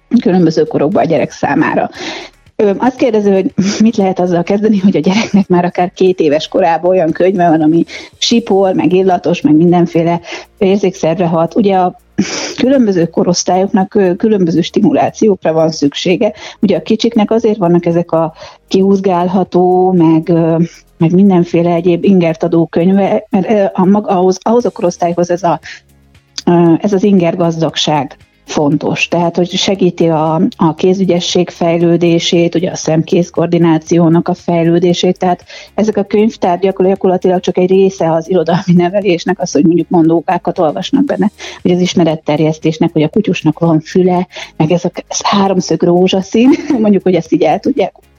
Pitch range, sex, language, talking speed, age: 165-195 Hz, female, Hungarian, 145 wpm, 30-49